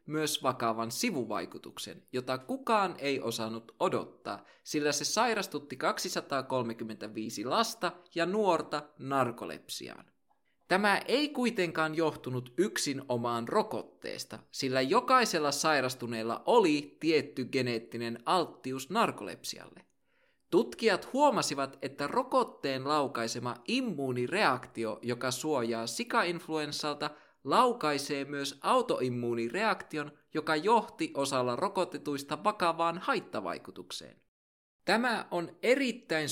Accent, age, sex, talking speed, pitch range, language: native, 20-39, male, 85 wpm, 120-170 Hz, Finnish